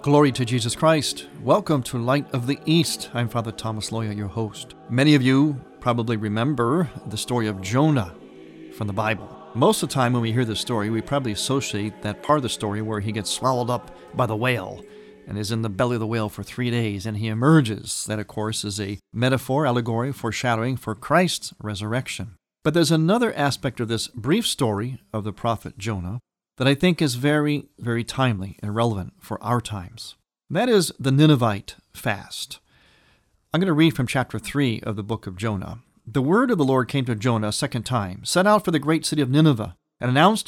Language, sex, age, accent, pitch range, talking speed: English, male, 40-59, American, 110-145 Hz, 210 wpm